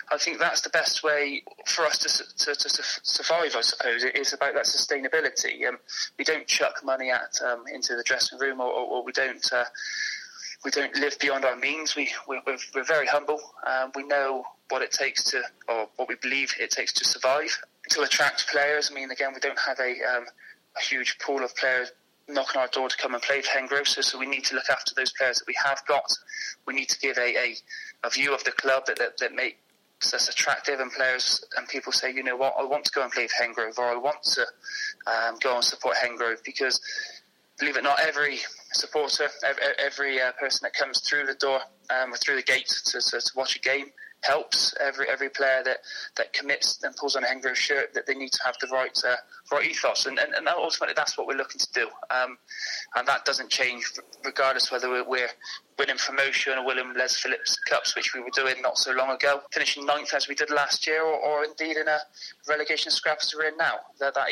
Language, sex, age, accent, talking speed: English, male, 20-39, British, 230 wpm